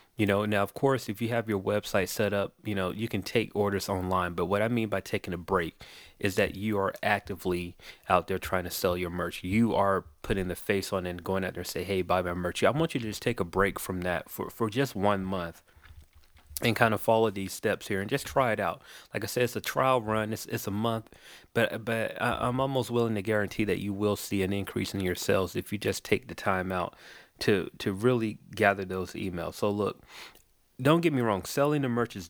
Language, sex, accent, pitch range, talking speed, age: English, male, American, 95-115 Hz, 245 wpm, 30-49